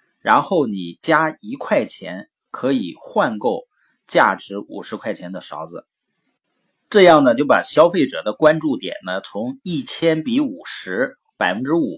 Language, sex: Chinese, male